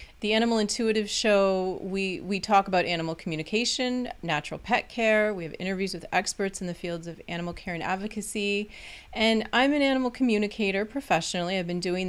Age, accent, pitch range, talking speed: 30-49, American, 180-220 Hz, 175 wpm